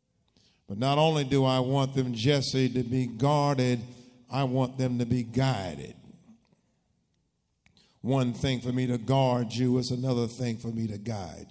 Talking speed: 160 wpm